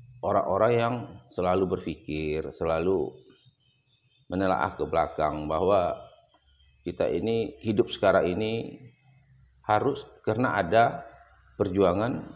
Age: 40-59